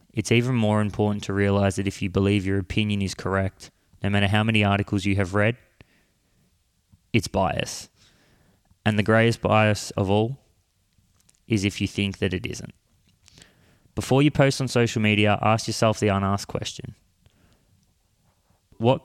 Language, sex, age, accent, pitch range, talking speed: English, male, 20-39, Australian, 100-110 Hz, 155 wpm